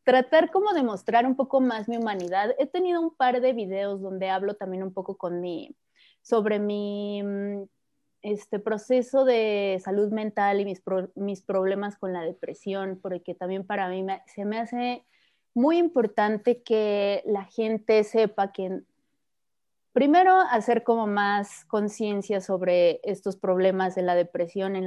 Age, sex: 20-39, female